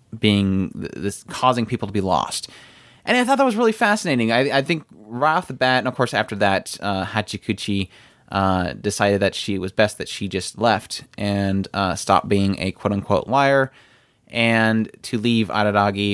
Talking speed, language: 185 wpm, English